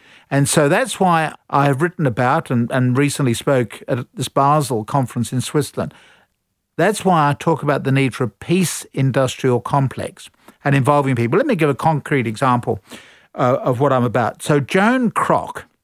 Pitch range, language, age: 125-150 Hz, English, 50-69